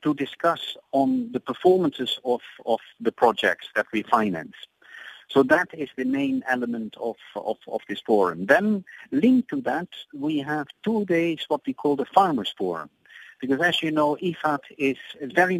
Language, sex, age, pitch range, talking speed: English, male, 50-69, 125-165 Hz, 170 wpm